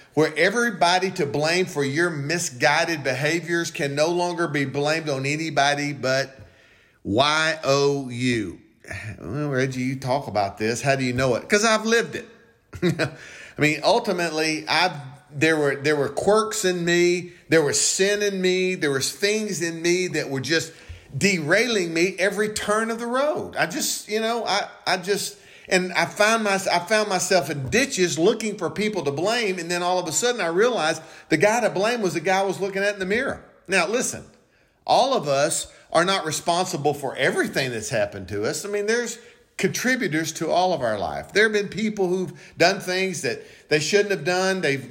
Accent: American